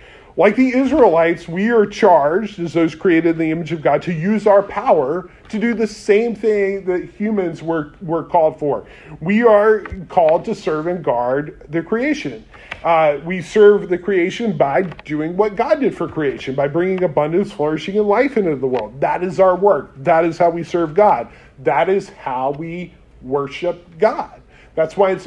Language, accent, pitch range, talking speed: English, American, 165-210 Hz, 185 wpm